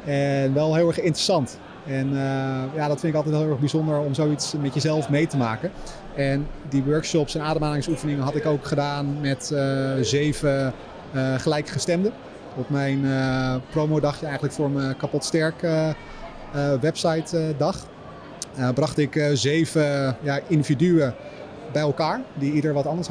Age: 30-49